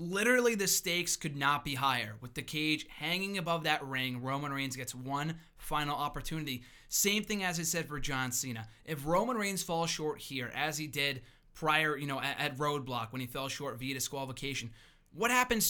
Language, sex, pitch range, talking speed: English, male, 135-170 Hz, 190 wpm